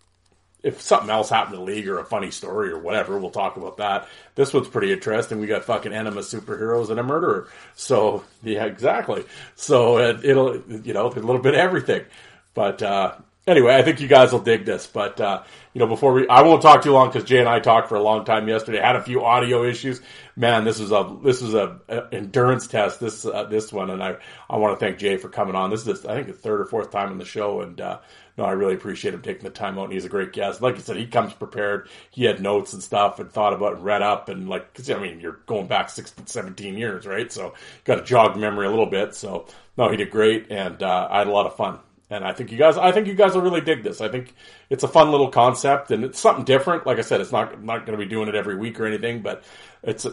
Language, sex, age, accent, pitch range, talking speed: English, male, 40-59, American, 105-135 Hz, 265 wpm